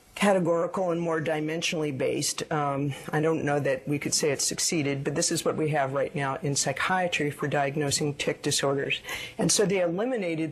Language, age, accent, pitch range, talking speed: English, 50-69, American, 145-175 Hz, 190 wpm